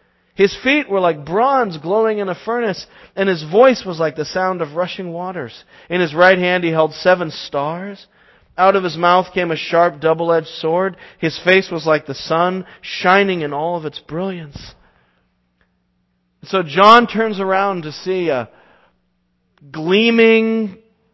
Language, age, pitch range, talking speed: English, 40-59, 115-190 Hz, 160 wpm